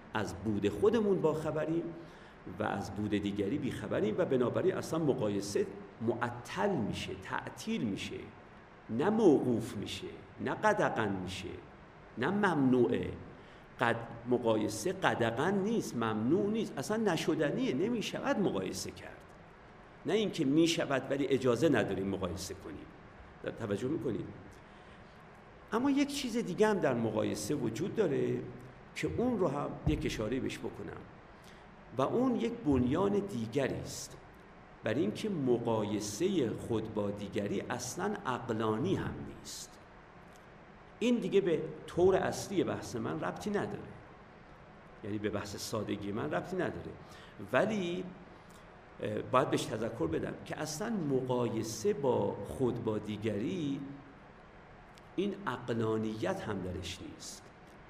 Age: 50-69